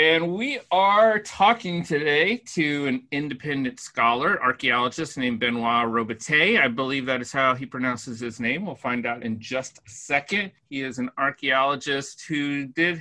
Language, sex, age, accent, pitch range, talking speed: English, male, 30-49, American, 120-150 Hz, 160 wpm